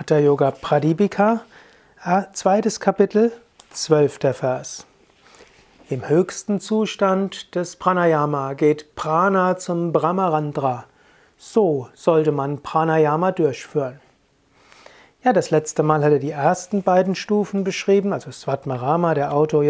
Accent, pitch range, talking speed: German, 150-190 Hz, 105 wpm